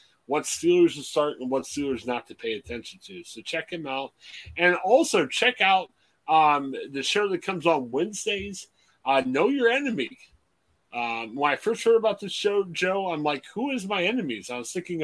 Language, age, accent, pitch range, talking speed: English, 30-49, American, 125-185 Hz, 195 wpm